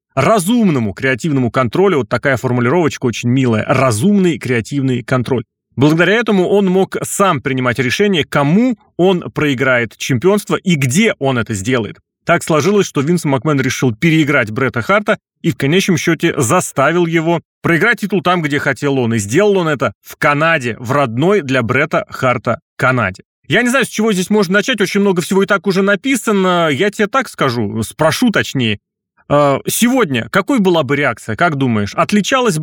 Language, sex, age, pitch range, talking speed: Russian, male, 30-49, 130-195 Hz, 165 wpm